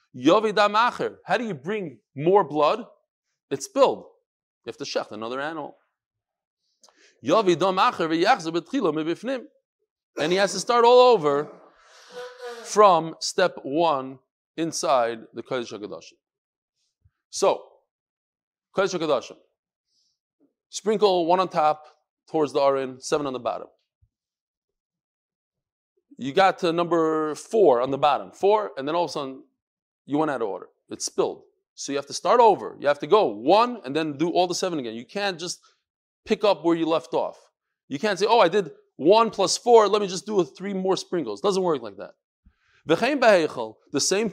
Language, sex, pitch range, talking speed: English, male, 160-230 Hz, 155 wpm